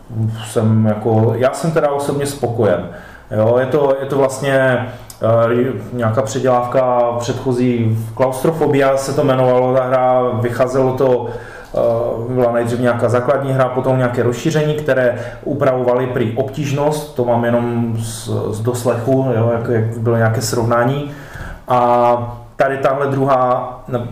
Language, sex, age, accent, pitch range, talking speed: Czech, male, 20-39, native, 115-130 Hz, 135 wpm